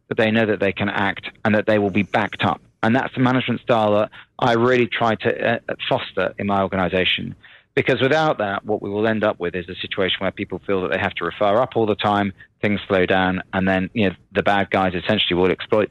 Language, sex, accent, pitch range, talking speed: English, male, British, 95-115 Hz, 245 wpm